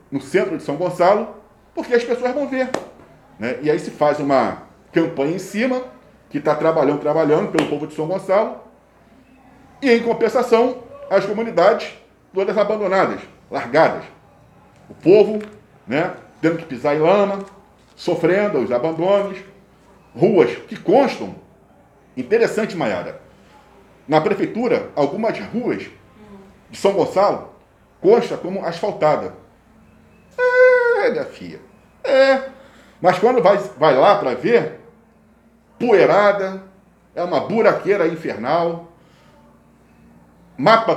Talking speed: 115 wpm